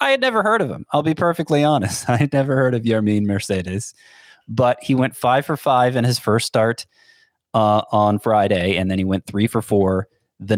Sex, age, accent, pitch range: male, 30-49, American, 95-135 Hz